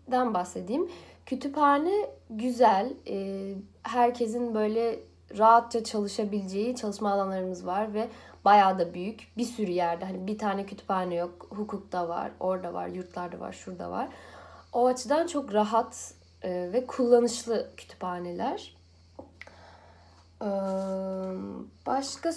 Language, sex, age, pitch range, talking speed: Turkish, female, 10-29, 185-250 Hz, 105 wpm